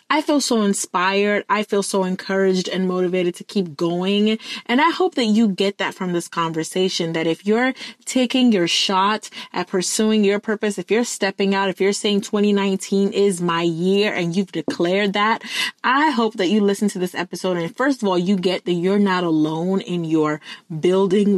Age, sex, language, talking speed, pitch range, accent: 20-39, female, English, 195 wpm, 170-205 Hz, American